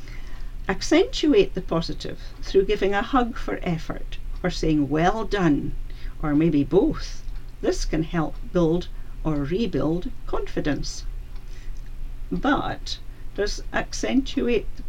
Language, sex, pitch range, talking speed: English, female, 155-205 Hz, 110 wpm